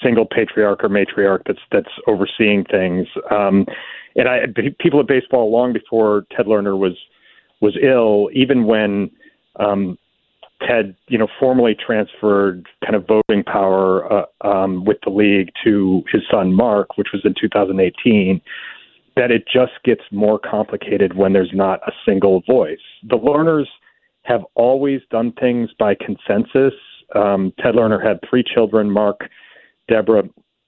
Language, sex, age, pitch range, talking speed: English, male, 40-59, 100-115 Hz, 145 wpm